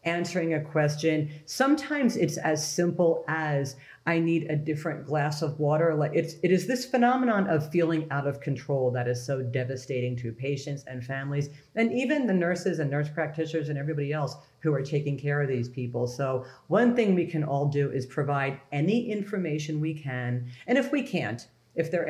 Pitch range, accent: 140-185 Hz, American